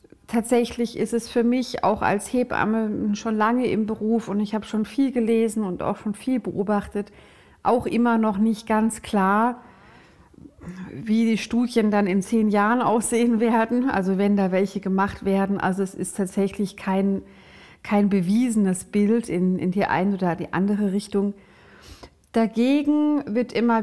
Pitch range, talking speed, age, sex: 195-235 Hz, 160 wpm, 50-69, female